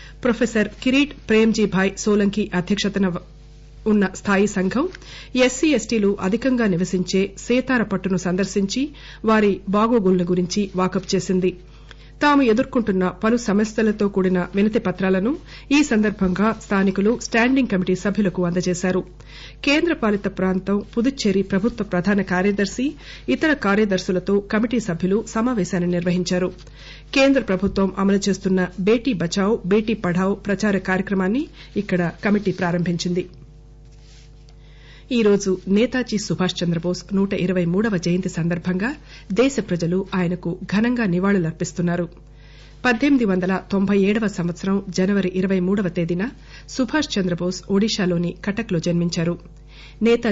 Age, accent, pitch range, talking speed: 50-69, Indian, 180-215 Hz, 105 wpm